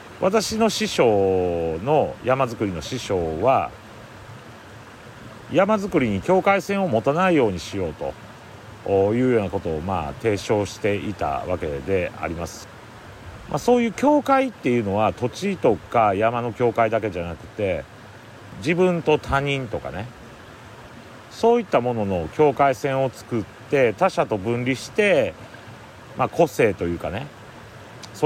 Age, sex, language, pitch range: 40-59, male, Japanese, 100-140 Hz